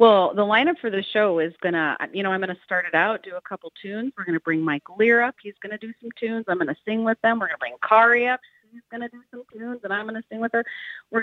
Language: English